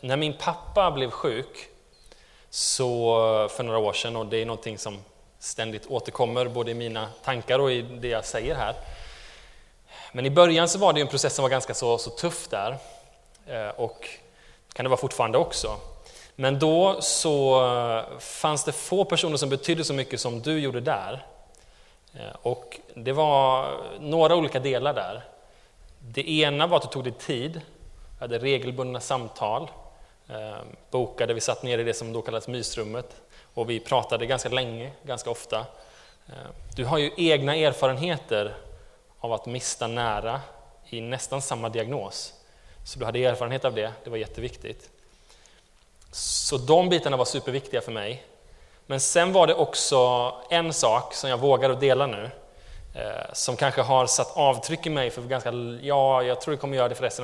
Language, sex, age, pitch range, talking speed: Swedish, male, 20-39, 115-140 Hz, 165 wpm